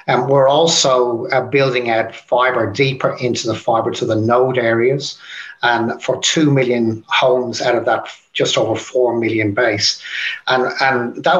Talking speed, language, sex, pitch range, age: 165 wpm, English, male, 115-140 Hz, 30-49